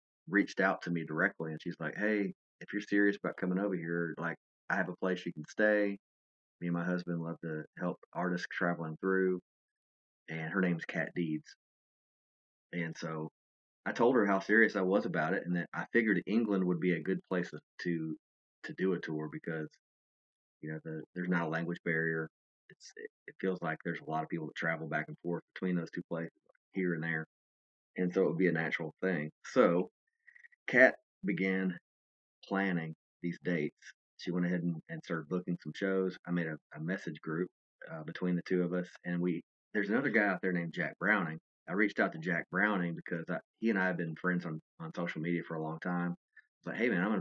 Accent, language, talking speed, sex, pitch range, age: American, English, 215 wpm, male, 80-95 Hz, 30-49